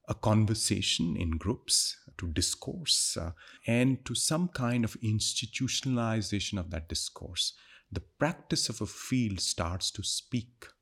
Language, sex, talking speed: English, male, 135 wpm